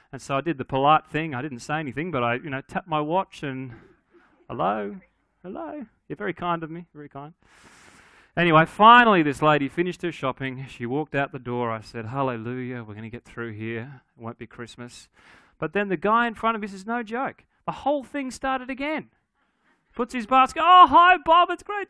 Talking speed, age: 210 wpm, 30-49